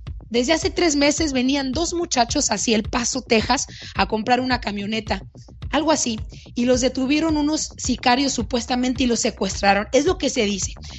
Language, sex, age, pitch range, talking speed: Spanish, female, 30-49, 225-280 Hz, 170 wpm